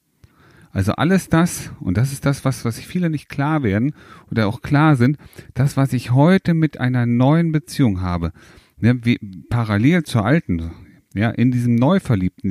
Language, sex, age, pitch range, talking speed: German, male, 40-59, 110-155 Hz, 170 wpm